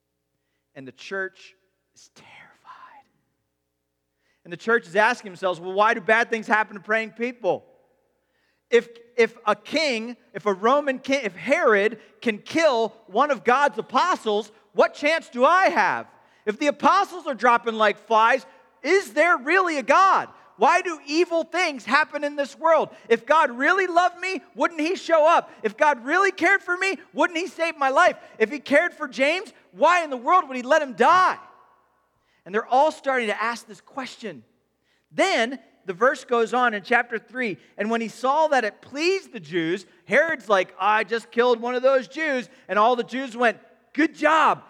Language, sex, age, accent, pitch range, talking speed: English, male, 40-59, American, 210-305 Hz, 185 wpm